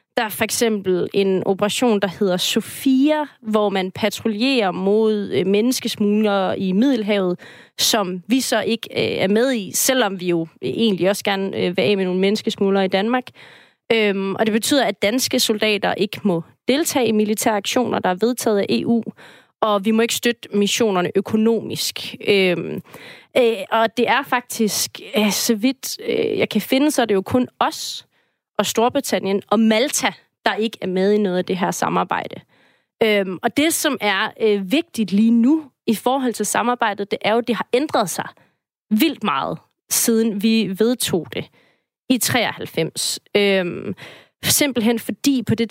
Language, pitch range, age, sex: Danish, 200-245 Hz, 30-49, female